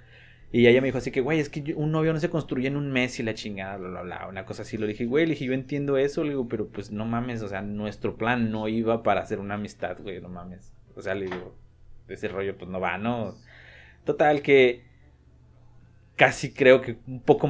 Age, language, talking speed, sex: 20-39, Spanish, 240 wpm, male